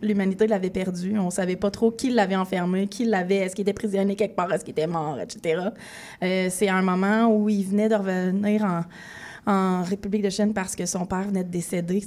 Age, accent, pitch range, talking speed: 20-39, Canadian, 180-210 Hz, 225 wpm